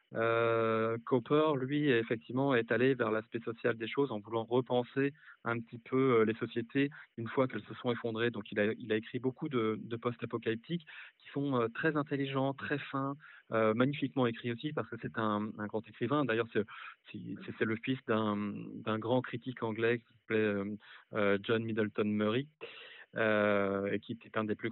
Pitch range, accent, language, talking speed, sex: 110-130 Hz, French, French, 195 wpm, male